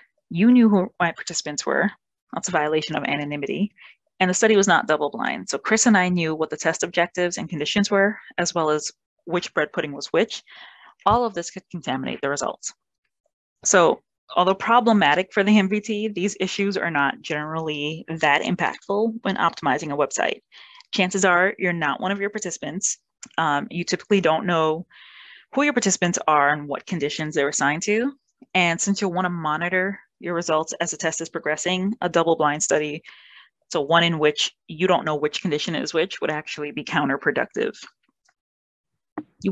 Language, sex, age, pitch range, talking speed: English, female, 20-39, 155-200 Hz, 175 wpm